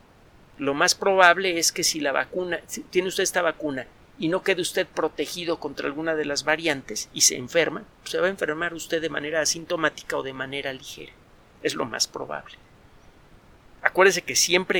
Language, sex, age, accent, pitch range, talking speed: Spanish, male, 50-69, Mexican, 145-180 Hz, 185 wpm